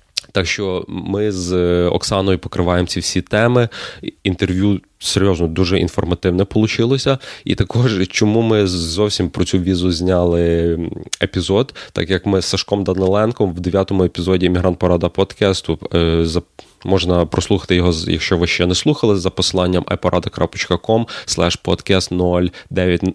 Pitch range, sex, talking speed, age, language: 90-105 Hz, male, 125 wpm, 20-39, Ukrainian